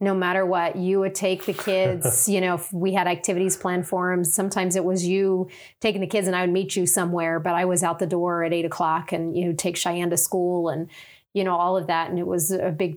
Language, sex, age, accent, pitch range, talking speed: English, female, 30-49, American, 175-190 Hz, 265 wpm